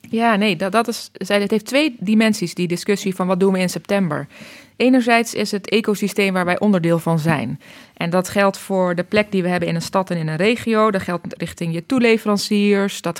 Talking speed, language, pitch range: 220 wpm, Dutch, 180-215 Hz